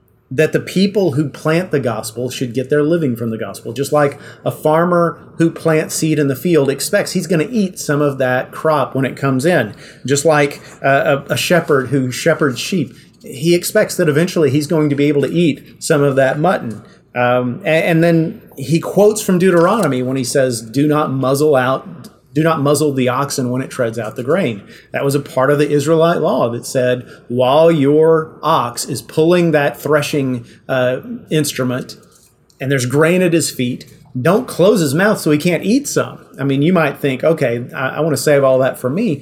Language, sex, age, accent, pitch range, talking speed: English, male, 30-49, American, 130-165 Hz, 205 wpm